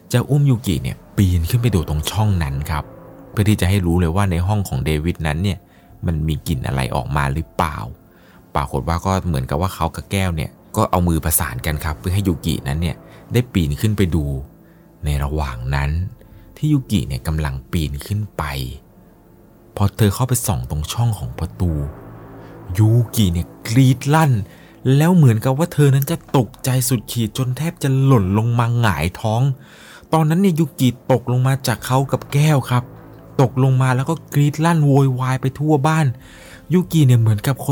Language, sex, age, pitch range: Thai, male, 20-39, 95-140 Hz